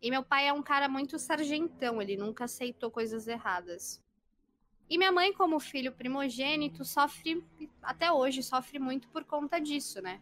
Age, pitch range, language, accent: 20-39, 225-290 Hz, Portuguese, Brazilian